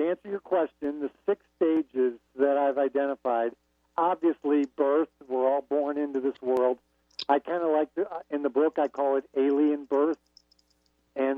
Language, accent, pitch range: English, American, 125-155 Hz